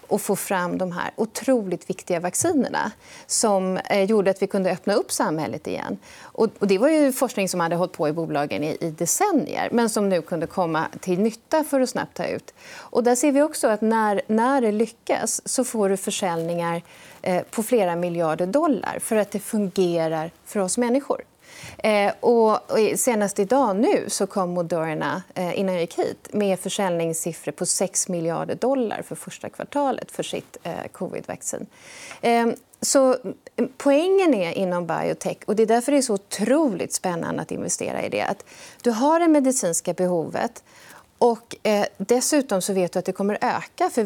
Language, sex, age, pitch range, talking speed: Swedish, female, 30-49, 180-250 Hz, 170 wpm